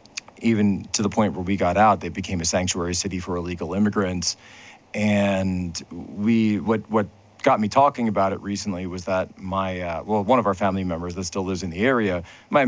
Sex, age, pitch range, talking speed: male, 40-59, 90-105 Hz, 205 wpm